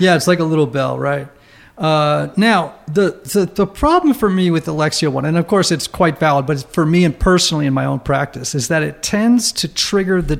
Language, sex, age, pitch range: English, male, 50-69, 150-195 Hz